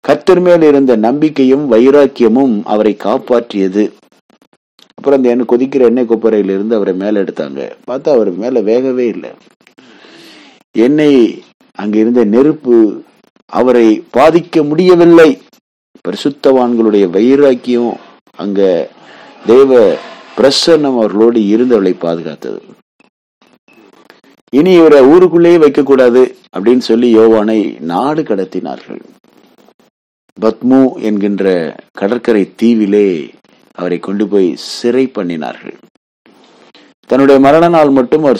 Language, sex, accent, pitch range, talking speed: English, male, Indian, 105-145 Hz, 85 wpm